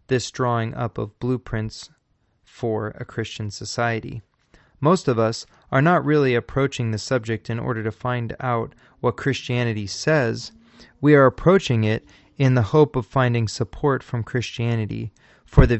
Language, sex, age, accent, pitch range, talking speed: English, male, 30-49, American, 115-130 Hz, 150 wpm